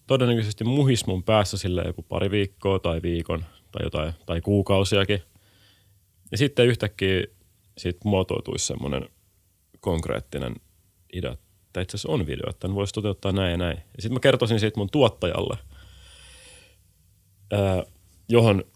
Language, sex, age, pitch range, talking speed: Finnish, male, 30-49, 90-105 Hz, 130 wpm